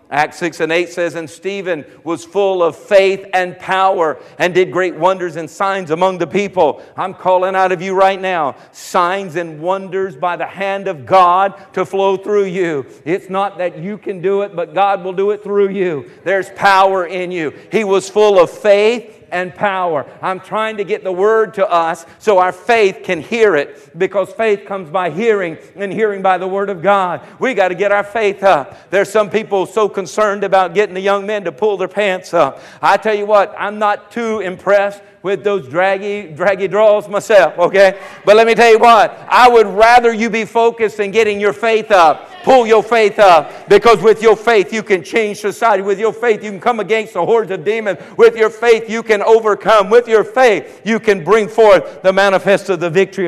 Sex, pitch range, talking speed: male, 180-210 Hz, 210 wpm